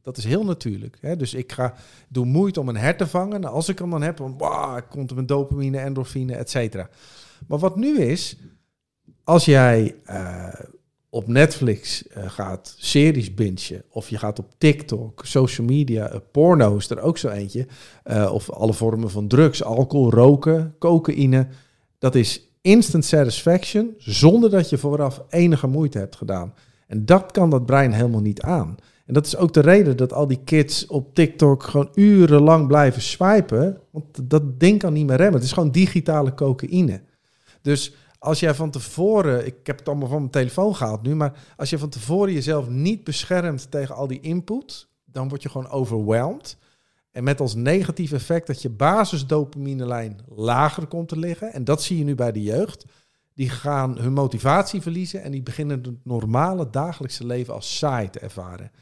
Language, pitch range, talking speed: Dutch, 125-160 Hz, 185 wpm